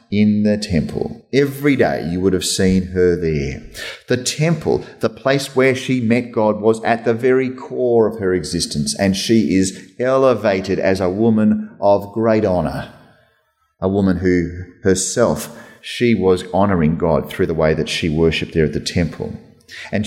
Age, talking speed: 30-49, 165 wpm